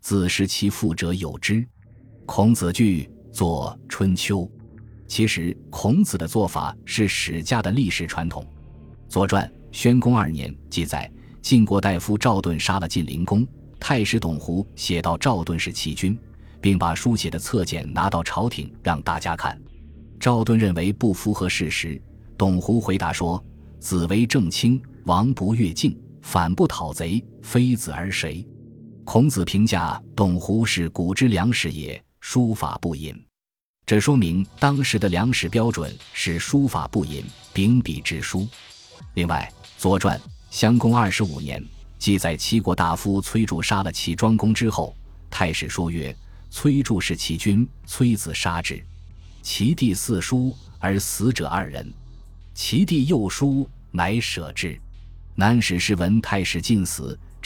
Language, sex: Chinese, male